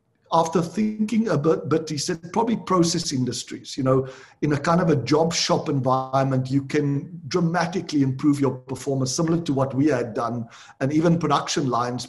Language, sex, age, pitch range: English, male, 50-69, 130-155 Hz